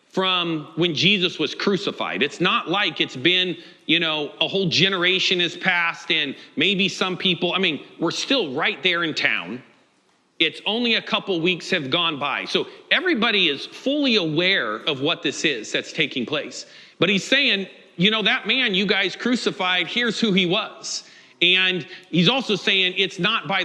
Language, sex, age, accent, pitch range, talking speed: English, male, 40-59, American, 160-195 Hz, 180 wpm